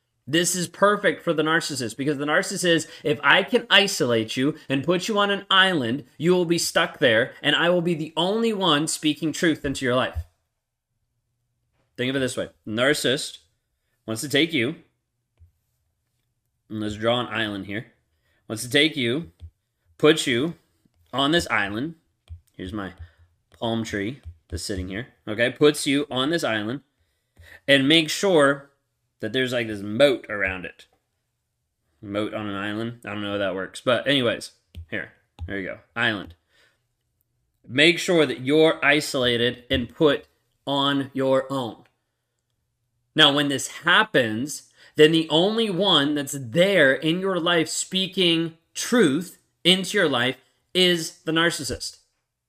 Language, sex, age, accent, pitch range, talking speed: English, male, 30-49, American, 115-160 Hz, 155 wpm